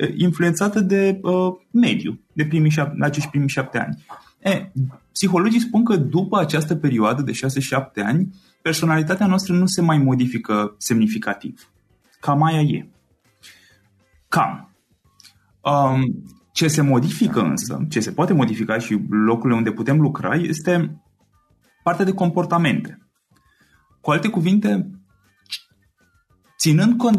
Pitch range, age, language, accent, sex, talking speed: 115-175 Hz, 20-39, Romanian, native, male, 125 wpm